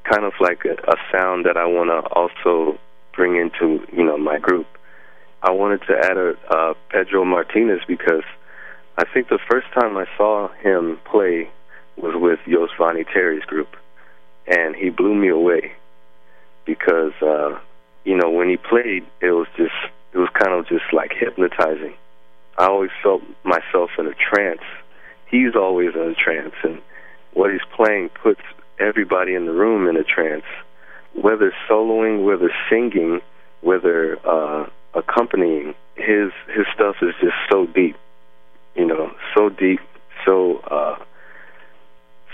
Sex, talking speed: male, 150 wpm